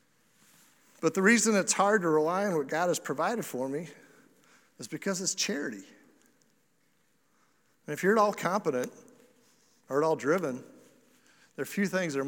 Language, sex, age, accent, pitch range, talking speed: English, male, 50-69, American, 150-210 Hz, 165 wpm